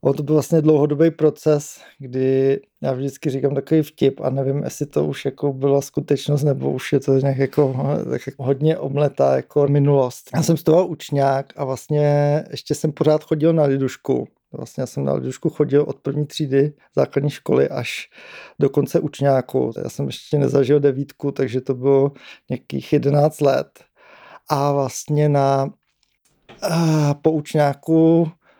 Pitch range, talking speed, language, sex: 140-155 Hz, 145 wpm, English, male